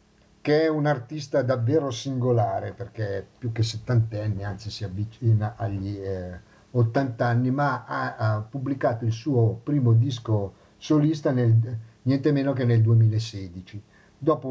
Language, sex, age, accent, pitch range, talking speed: Italian, male, 50-69, native, 110-125 Hz, 130 wpm